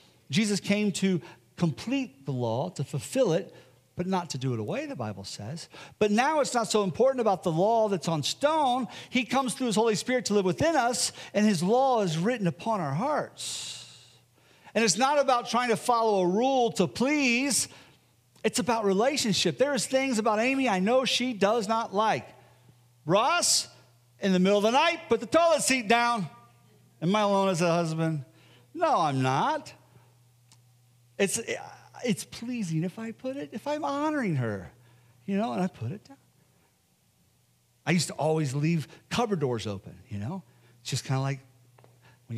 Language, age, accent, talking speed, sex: English, 50-69, American, 180 wpm, male